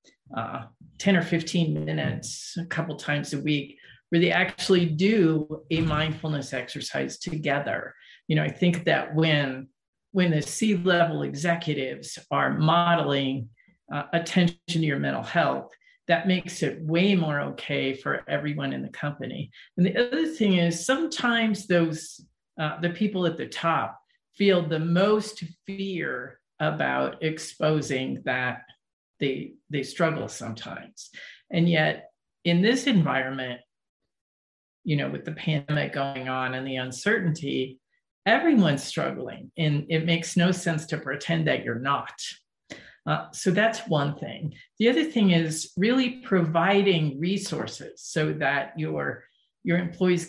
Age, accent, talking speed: 50-69, American, 140 wpm